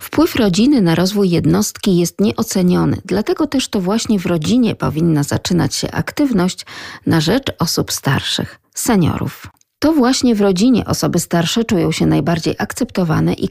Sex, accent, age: female, native, 40-59